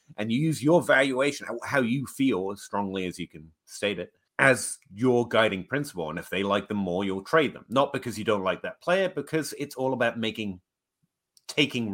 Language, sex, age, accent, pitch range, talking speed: English, male, 30-49, British, 95-135 Hz, 205 wpm